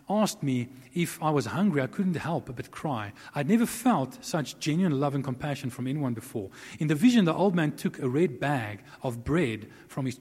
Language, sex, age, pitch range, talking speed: English, male, 40-59, 125-170 Hz, 210 wpm